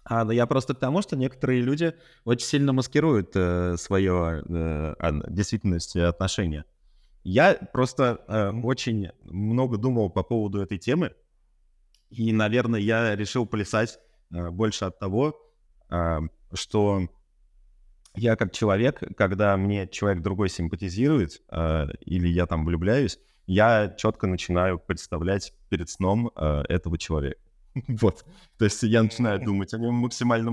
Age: 20-39